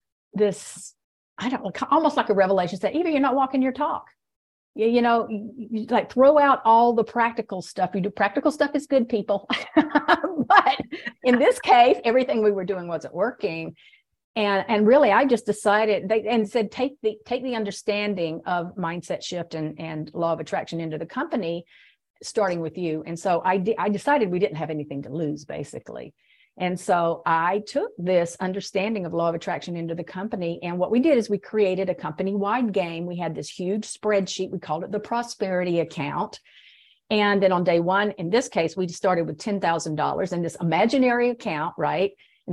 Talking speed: 195 wpm